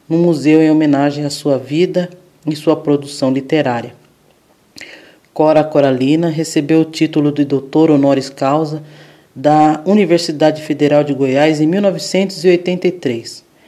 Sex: male